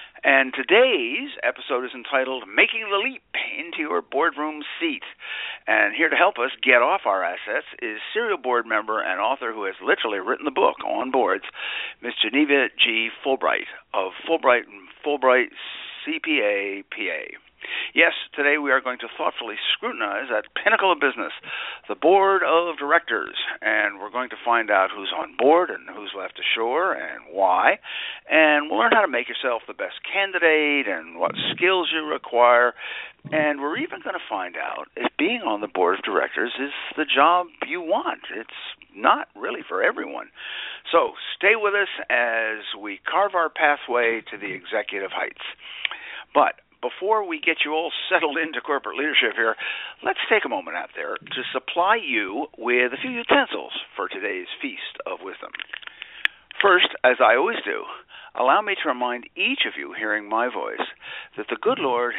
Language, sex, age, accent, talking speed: English, male, 60-79, American, 170 wpm